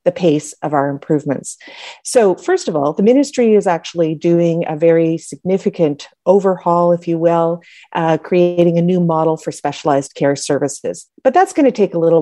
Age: 40-59